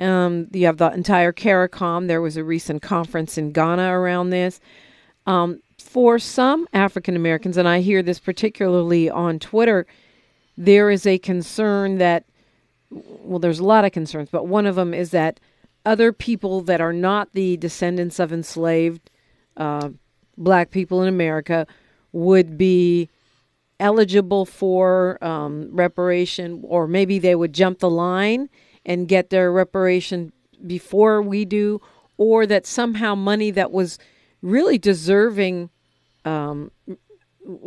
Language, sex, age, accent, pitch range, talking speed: English, female, 50-69, American, 175-205 Hz, 135 wpm